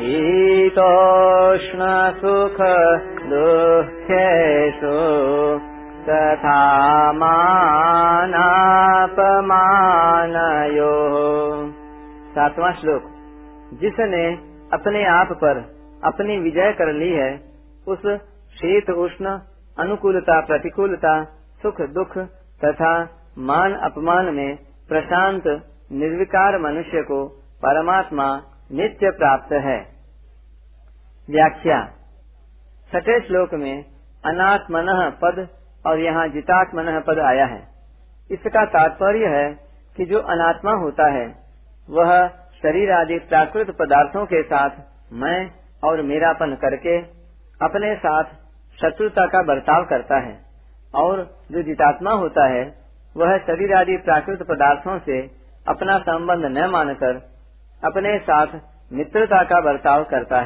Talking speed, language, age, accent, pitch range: 95 wpm, Hindi, 40-59, native, 145-185 Hz